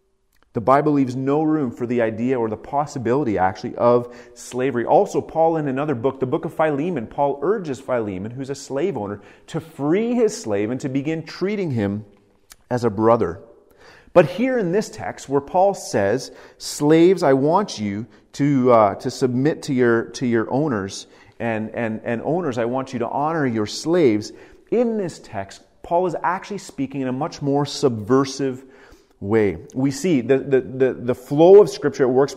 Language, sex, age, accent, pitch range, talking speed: English, male, 30-49, American, 120-155 Hz, 180 wpm